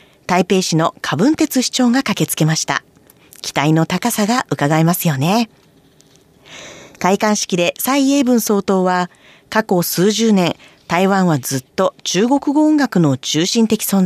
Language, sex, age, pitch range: Japanese, female, 40-59, 170-255 Hz